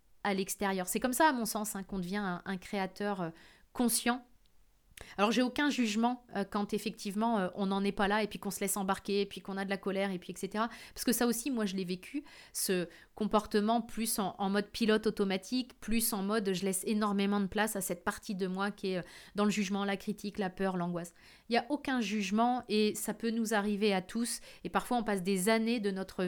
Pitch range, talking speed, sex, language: 190-225 Hz, 240 wpm, female, French